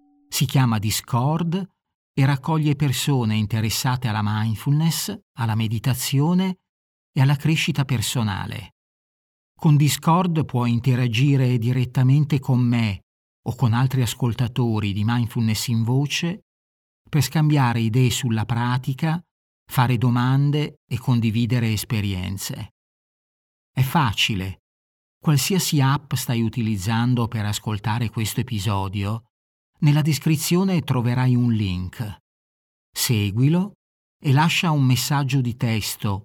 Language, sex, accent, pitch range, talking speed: Italian, male, native, 110-140 Hz, 105 wpm